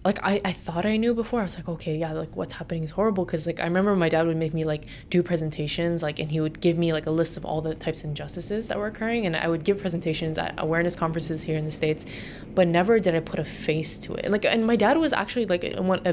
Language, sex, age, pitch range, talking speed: English, female, 20-39, 155-190 Hz, 285 wpm